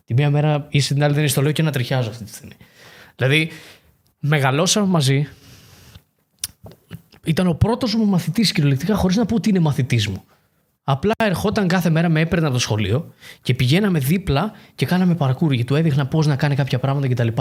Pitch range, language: 130-165 Hz, Greek